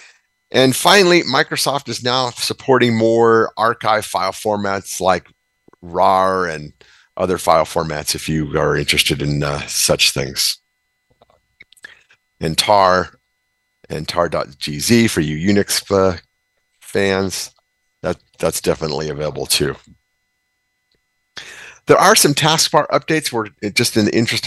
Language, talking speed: English, 120 wpm